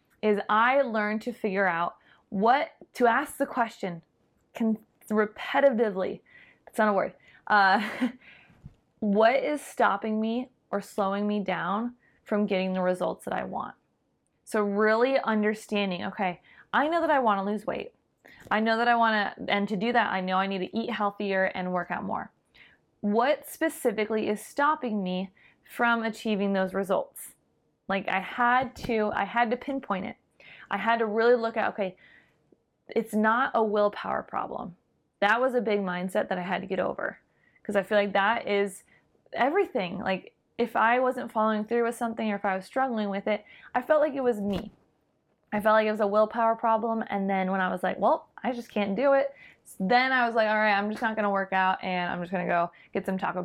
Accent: American